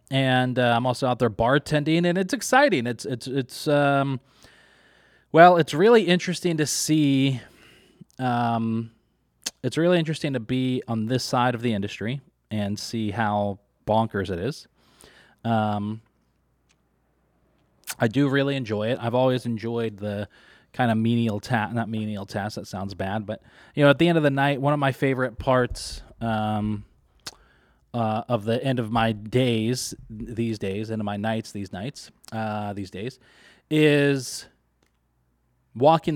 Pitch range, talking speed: 105-130 Hz, 155 wpm